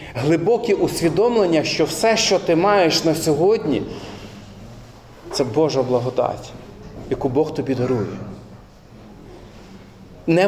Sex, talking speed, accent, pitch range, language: male, 95 wpm, native, 150-195 Hz, Ukrainian